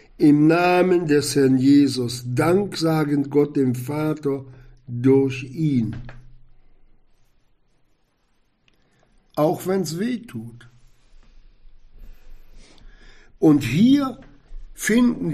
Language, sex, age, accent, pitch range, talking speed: German, male, 60-79, German, 135-195 Hz, 75 wpm